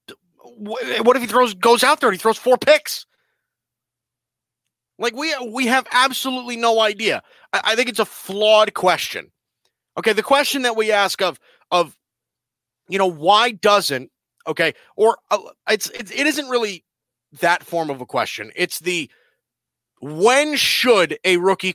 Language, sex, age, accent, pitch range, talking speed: English, male, 30-49, American, 175-250 Hz, 155 wpm